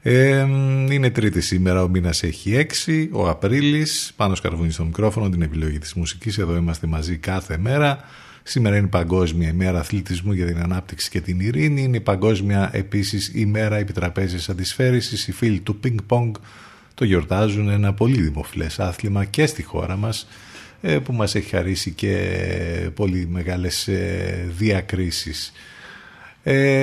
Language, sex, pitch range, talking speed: Greek, male, 90-125 Hz, 150 wpm